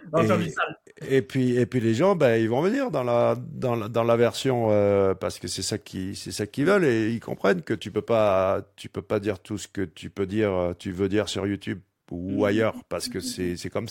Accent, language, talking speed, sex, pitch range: French, French, 245 wpm, male, 100-135 Hz